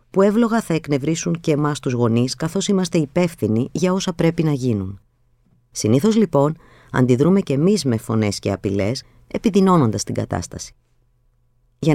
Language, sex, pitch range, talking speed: Greek, female, 120-170 Hz, 145 wpm